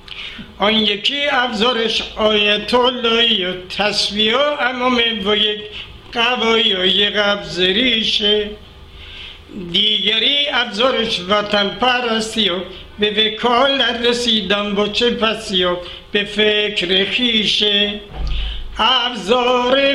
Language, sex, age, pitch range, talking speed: Persian, male, 60-79, 195-240 Hz, 80 wpm